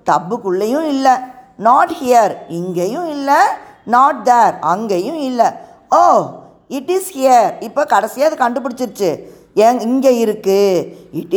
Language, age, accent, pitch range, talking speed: Tamil, 20-39, native, 220-315 Hz, 115 wpm